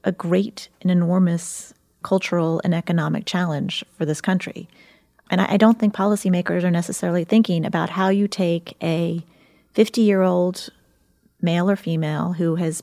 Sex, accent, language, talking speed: female, American, English, 145 wpm